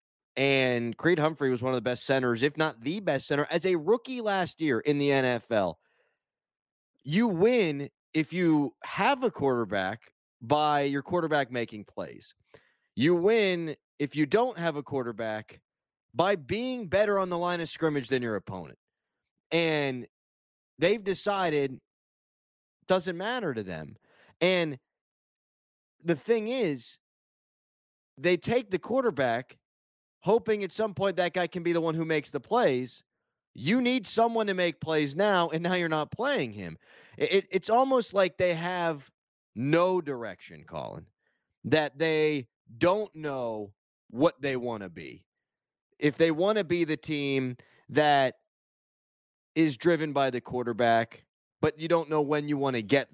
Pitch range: 130-180 Hz